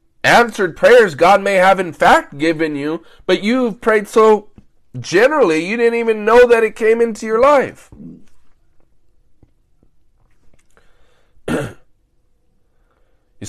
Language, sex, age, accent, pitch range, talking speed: English, male, 20-39, American, 150-190 Hz, 110 wpm